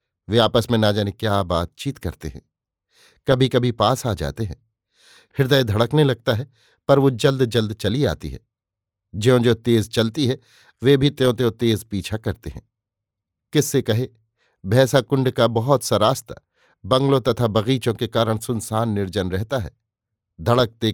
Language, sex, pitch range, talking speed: Hindi, male, 105-130 Hz, 165 wpm